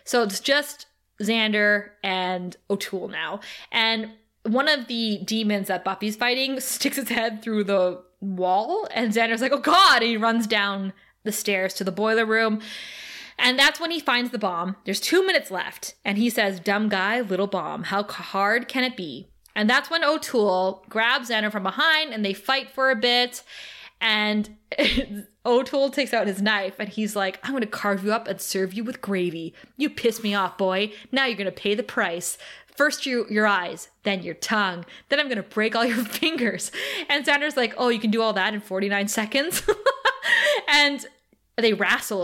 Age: 20-39